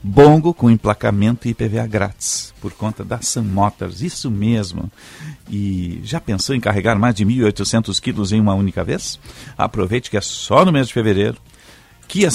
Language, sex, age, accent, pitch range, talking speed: Portuguese, male, 50-69, Brazilian, 100-115 Hz, 170 wpm